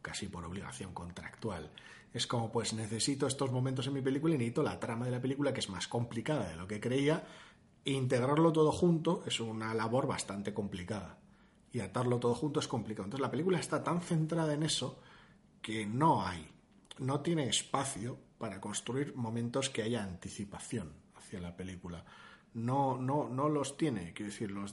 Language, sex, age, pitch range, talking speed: Spanish, male, 30-49, 100-130 Hz, 180 wpm